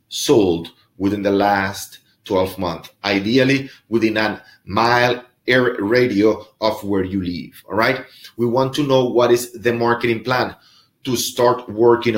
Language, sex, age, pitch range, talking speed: English, male, 30-49, 105-125 Hz, 155 wpm